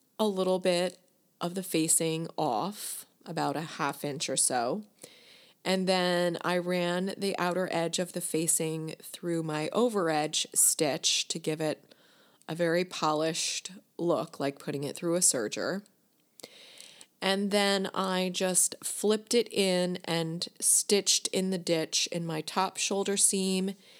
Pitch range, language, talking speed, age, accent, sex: 160-190 Hz, English, 145 wpm, 30-49, American, female